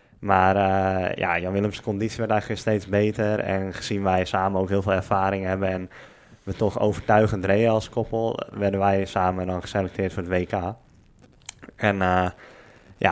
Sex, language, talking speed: male, Dutch, 170 wpm